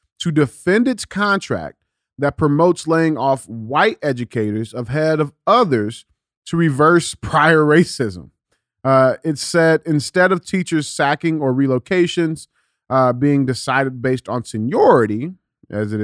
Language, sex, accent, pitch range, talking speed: English, male, American, 115-155 Hz, 125 wpm